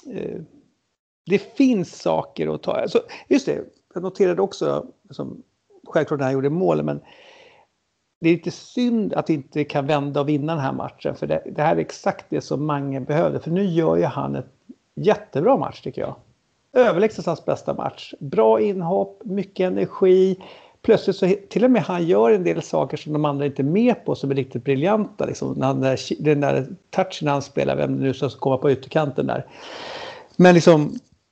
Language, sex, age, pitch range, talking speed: English, male, 60-79, 135-195 Hz, 185 wpm